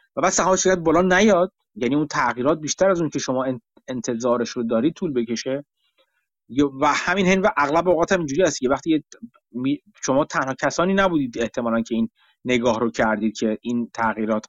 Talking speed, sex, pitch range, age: 180 wpm, male, 130-190 Hz, 30-49